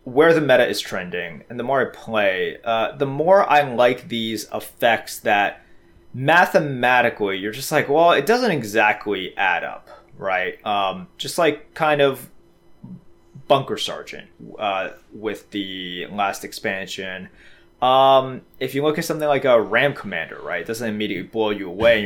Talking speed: 160 wpm